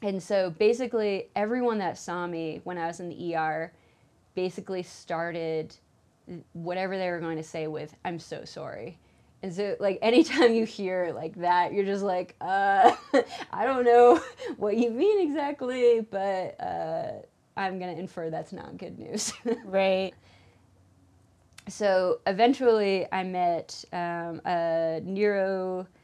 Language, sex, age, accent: English, female, 20-39, American